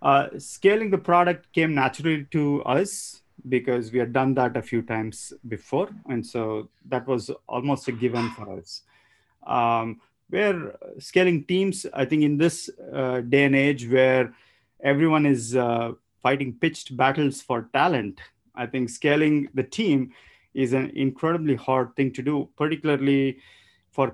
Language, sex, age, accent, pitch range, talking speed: Kannada, male, 30-49, native, 115-145 Hz, 150 wpm